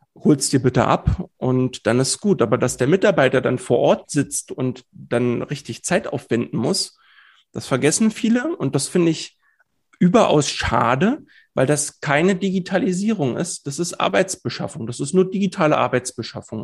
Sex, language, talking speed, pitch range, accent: male, German, 160 wpm, 130-175 Hz, German